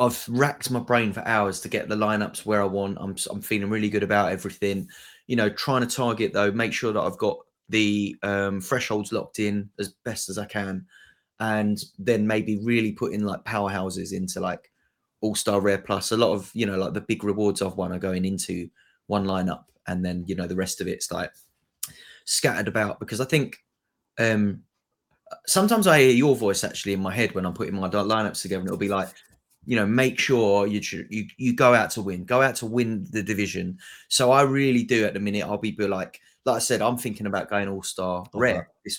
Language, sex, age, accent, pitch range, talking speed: English, male, 20-39, British, 100-125 Hz, 215 wpm